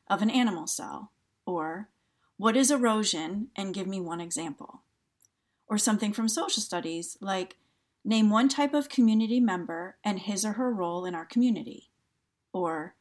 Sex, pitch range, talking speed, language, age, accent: female, 185-240 Hz, 155 wpm, English, 40-59, American